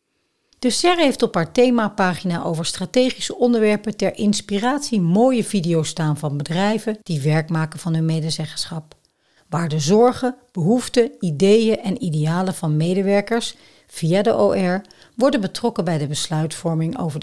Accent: Dutch